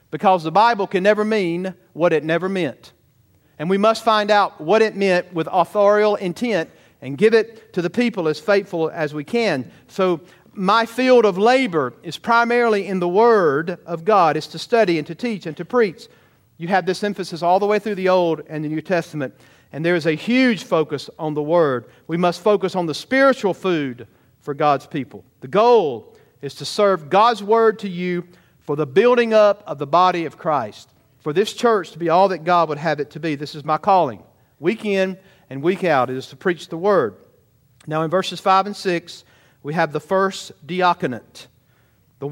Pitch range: 150-205 Hz